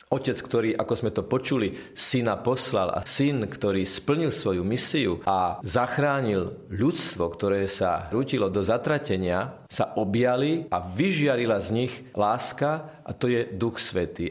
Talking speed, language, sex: 145 wpm, Slovak, male